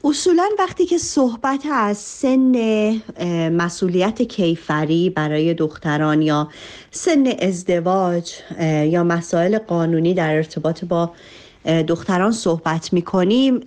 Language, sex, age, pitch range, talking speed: Persian, female, 40-59, 165-215 Hz, 95 wpm